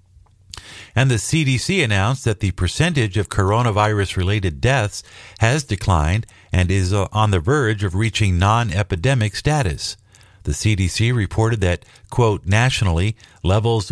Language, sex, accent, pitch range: English, male, American, 90-110 Hz